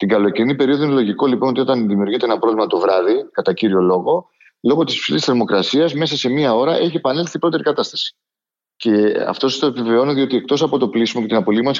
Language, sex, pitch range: Greek, male, 115-150 Hz